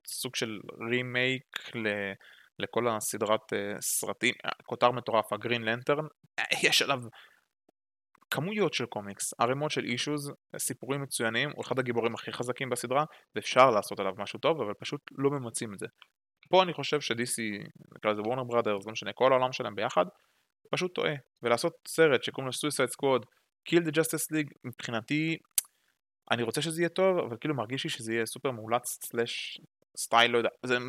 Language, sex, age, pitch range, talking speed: Hebrew, male, 20-39, 115-145 Hz, 155 wpm